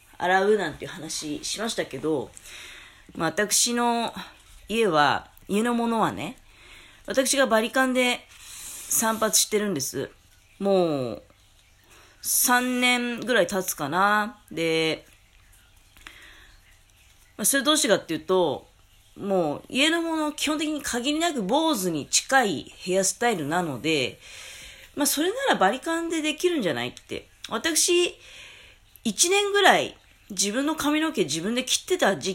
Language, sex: Japanese, female